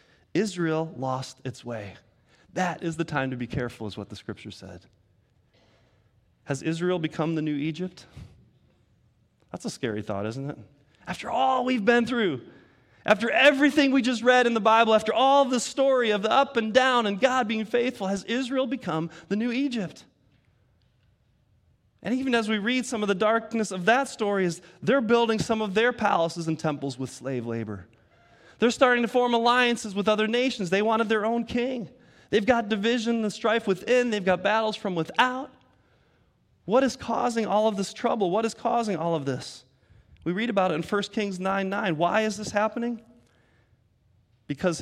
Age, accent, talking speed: 30-49, American, 180 wpm